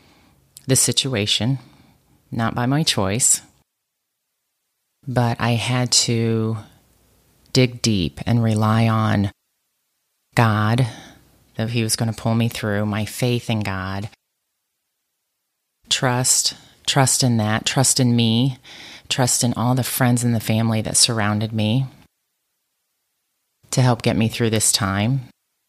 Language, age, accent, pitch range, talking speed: English, 30-49, American, 110-130 Hz, 125 wpm